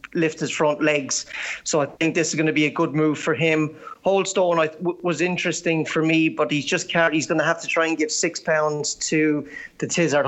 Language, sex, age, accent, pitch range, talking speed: English, male, 30-49, Irish, 150-175 Hz, 235 wpm